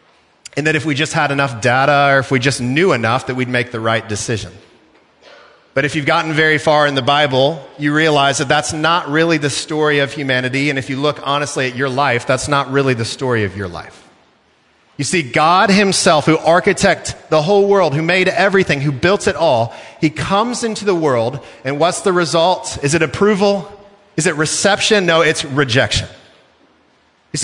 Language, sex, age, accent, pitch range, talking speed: English, male, 40-59, American, 135-180 Hz, 195 wpm